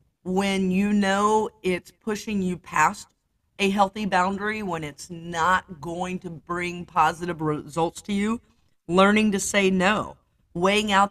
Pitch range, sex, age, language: 165-210 Hz, female, 40-59, English